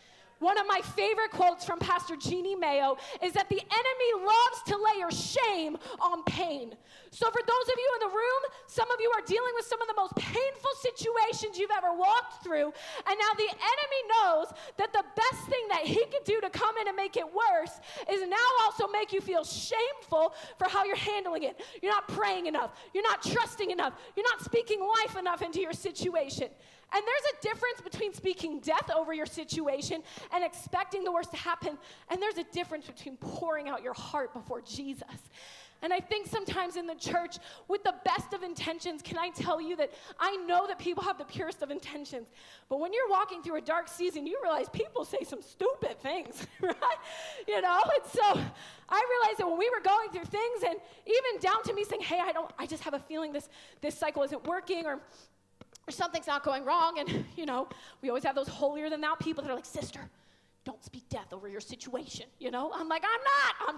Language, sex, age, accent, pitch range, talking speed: English, female, 30-49, American, 315-435 Hz, 210 wpm